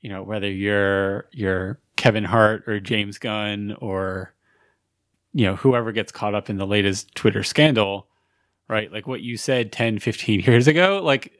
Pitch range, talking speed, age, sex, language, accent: 100-120 Hz, 170 wpm, 20-39, male, English, American